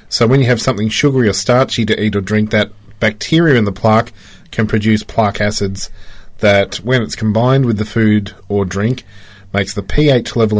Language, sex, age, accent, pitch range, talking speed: English, male, 30-49, Australian, 100-130 Hz, 195 wpm